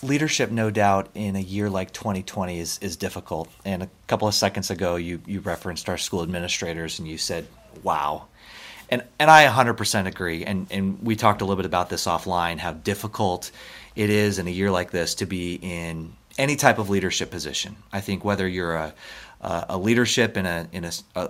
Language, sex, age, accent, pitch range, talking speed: English, male, 30-49, American, 90-110 Hz, 200 wpm